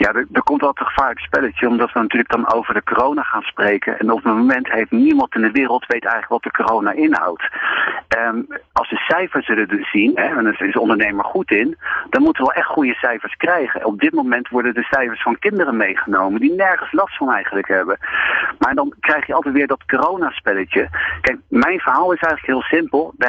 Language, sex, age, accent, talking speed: Dutch, male, 40-59, Dutch, 225 wpm